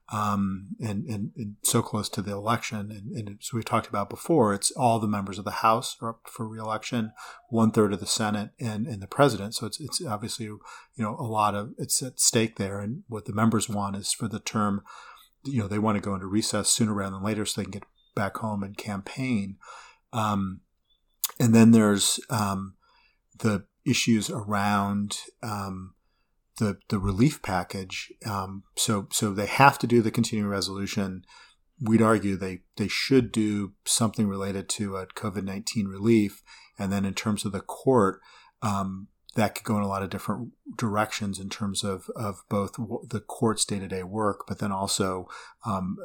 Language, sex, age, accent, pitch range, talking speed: English, male, 40-59, American, 100-115 Hz, 190 wpm